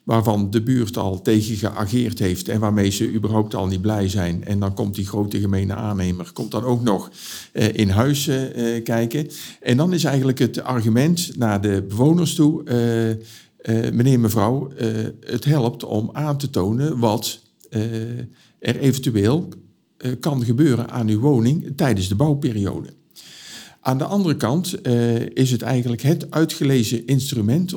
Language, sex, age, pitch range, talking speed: Dutch, male, 50-69, 105-135 Hz, 165 wpm